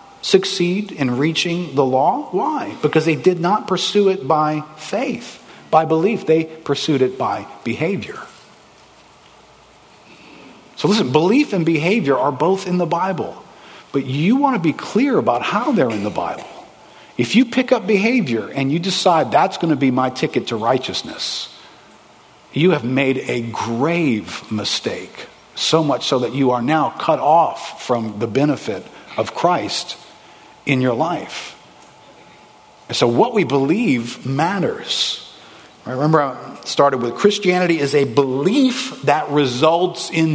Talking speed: 145 wpm